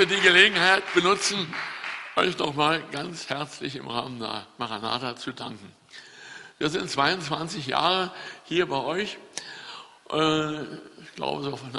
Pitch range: 130-160 Hz